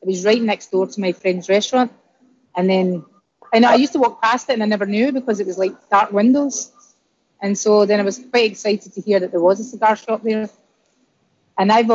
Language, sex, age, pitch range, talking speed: English, female, 30-49, 195-230 Hz, 230 wpm